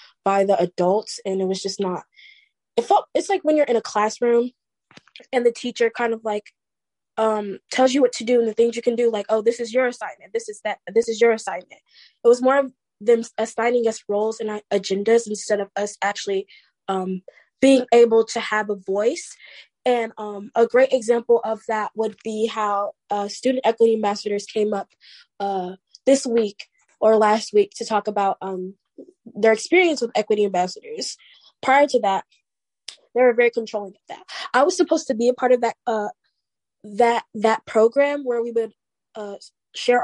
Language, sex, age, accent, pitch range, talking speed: English, female, 20-39, American, 205-250 Hz, 190 wpm